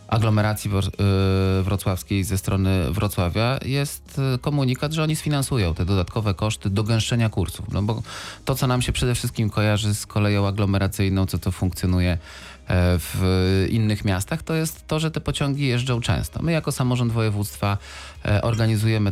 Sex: male